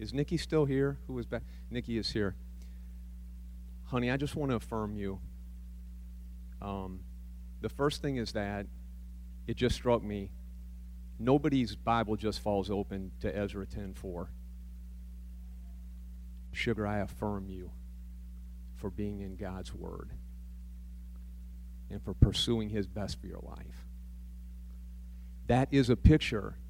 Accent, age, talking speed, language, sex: American, 40-59, 130 wpm, English, male